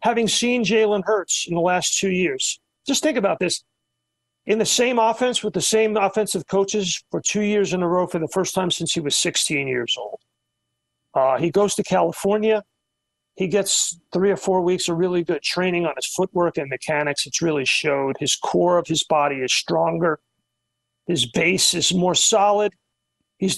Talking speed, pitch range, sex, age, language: 190 wpm, 170-215 Hz, male, 40-59, English